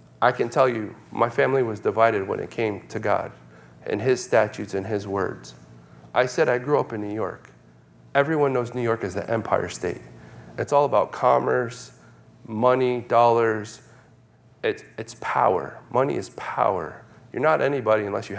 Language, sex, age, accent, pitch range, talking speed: English, male, 30-49, American, 100-130 Hz, 170 wpm